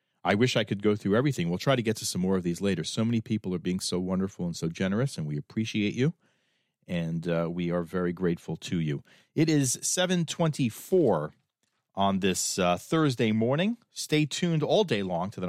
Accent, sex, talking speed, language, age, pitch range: American, male, 210 wpm, English, 40-59, 100-160 Hz